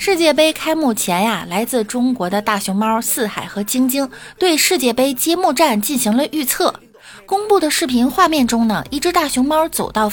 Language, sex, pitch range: Chinese, female, 200-295 Hz